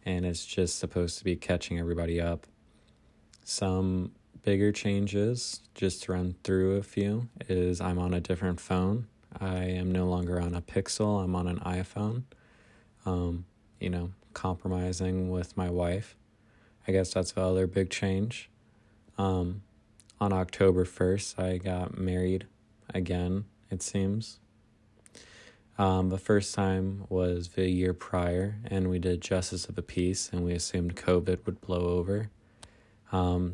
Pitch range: 90-100 Hz